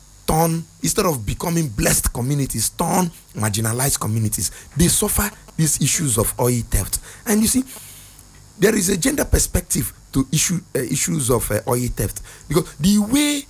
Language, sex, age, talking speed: English, male, 50-69, 155 wpm